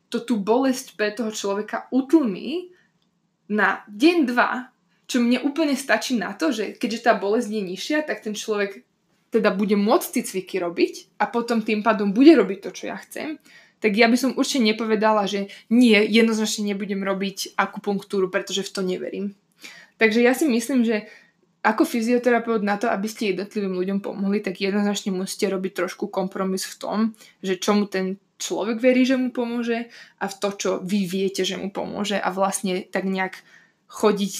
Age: 20-39